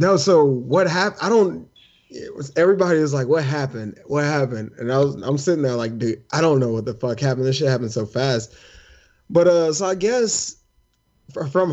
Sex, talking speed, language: male, 220 wpm, English